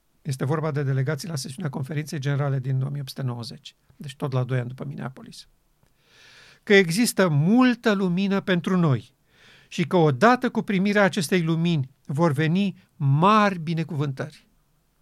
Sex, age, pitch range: male, 50-69, 140-185 Hz